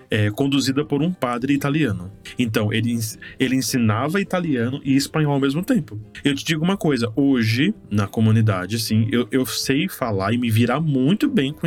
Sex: male